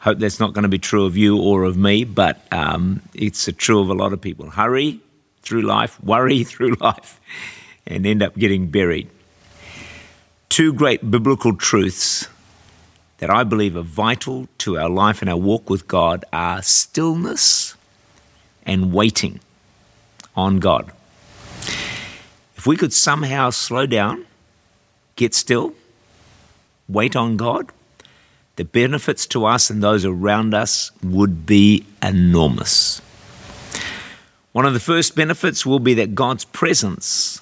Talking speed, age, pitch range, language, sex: 140 wpm, 50-69, 95-120 Hz, English, male